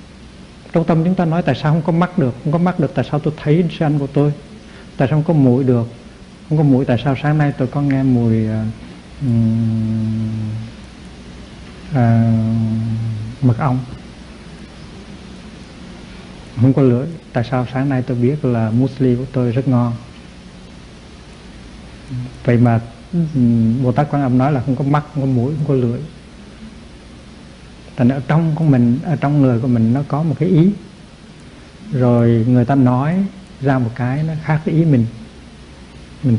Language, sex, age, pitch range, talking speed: Vietnamese, male, 60-79, 115-150 Hz, 170 wpm